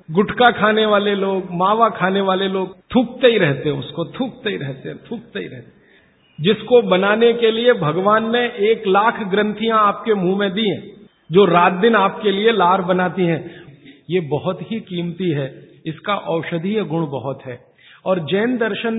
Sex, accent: male, native